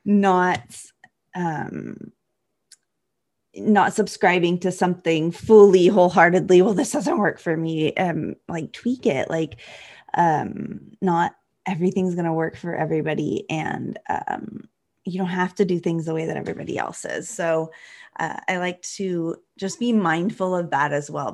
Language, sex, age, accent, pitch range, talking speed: English, female, 20-39, American, 165-200 Hz, 150 wpm